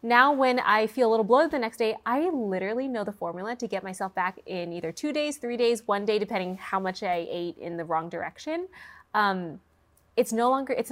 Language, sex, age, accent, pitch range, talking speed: English, female, 20-39, American, 195-245 Hz, 225 wpm